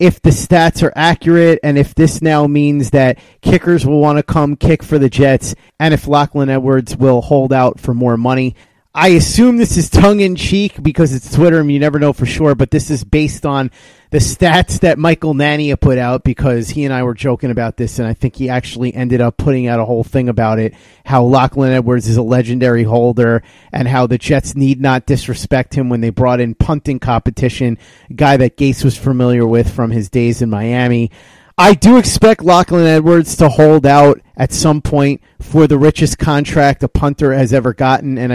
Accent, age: American, 30-49